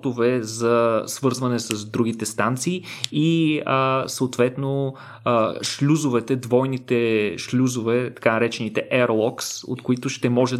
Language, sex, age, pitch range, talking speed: Bulgarian, male, 20-39, 115-135 Hz, 110 wpm